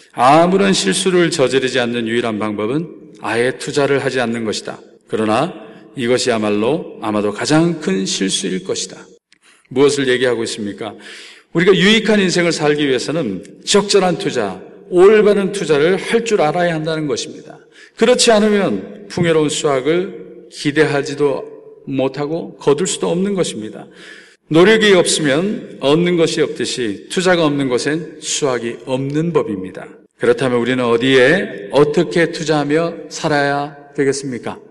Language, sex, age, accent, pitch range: Korean, male, 40-59, native, 130-180 Hz